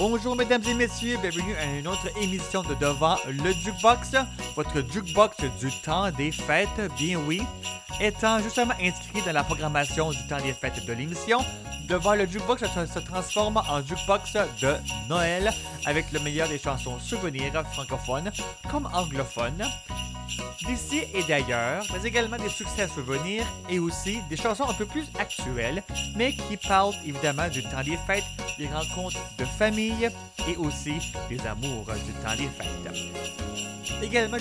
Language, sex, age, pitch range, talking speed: French, male, 30-49, 135-210 Hz, 155 wpm